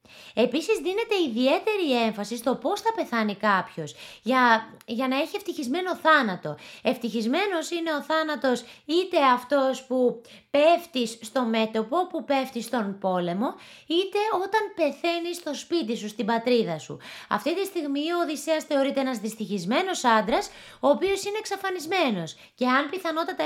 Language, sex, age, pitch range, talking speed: Greek, female, 20-39, 225-335 Hz, 140 wpm